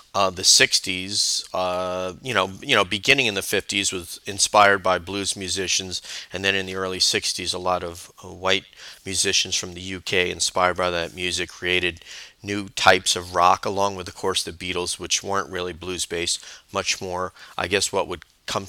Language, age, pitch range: English, 40-59, 90-100 Hz